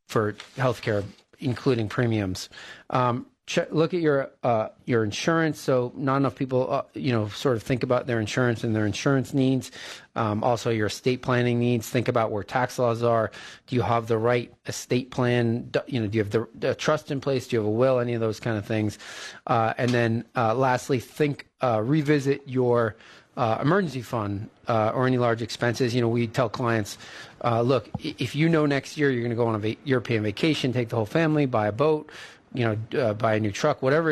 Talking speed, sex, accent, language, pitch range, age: 215 wpm, male, American, English, 110-130 Hz, 30-49